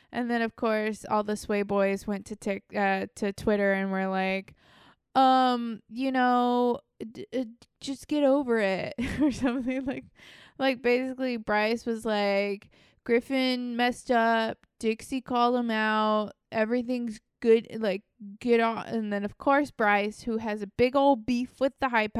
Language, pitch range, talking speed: English, 205-245 Hz, 160 wpm